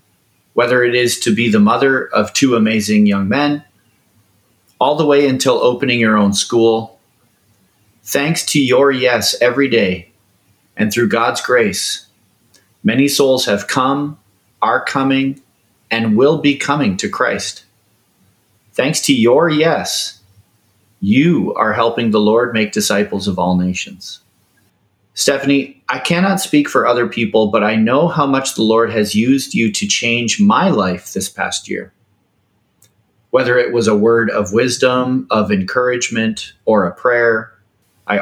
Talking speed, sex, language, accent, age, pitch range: 145 wpm, male, English, American, 30-49, 100-125 Hz